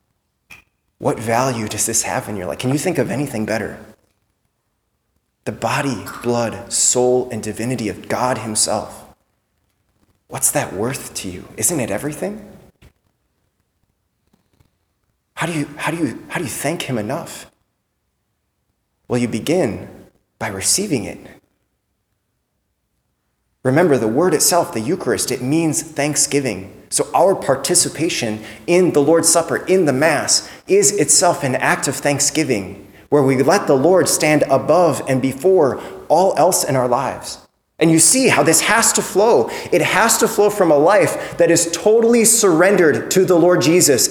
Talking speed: 145 wpm